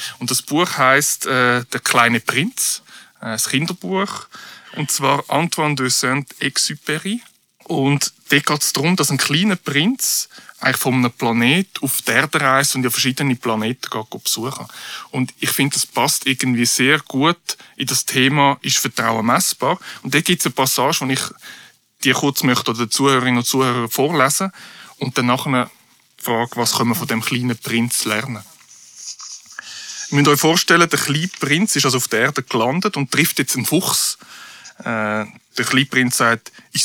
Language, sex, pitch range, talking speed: German, male, 125-160 Hz, 170 wpm